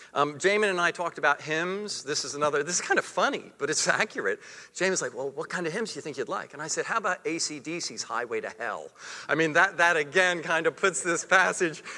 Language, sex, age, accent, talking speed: English, male, 50-69, American, 245 wpm